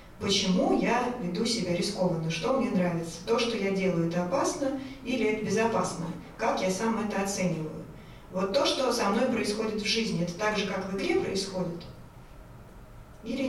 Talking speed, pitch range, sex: 170 wpm, 175-220 Hz, female